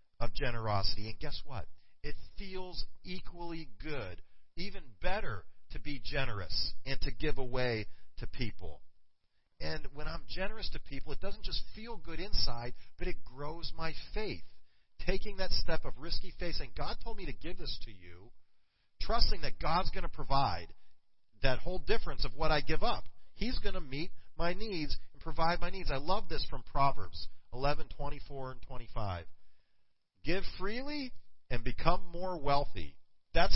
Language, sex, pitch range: English, male, 110-185 Hz